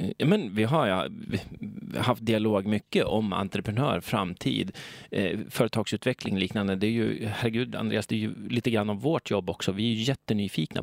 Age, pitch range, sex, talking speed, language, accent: 30-49, 95-130 Hz, male, 175 wpm, Swedish, native